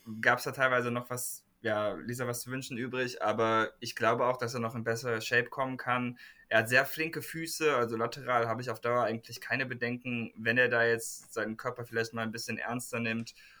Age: 20-39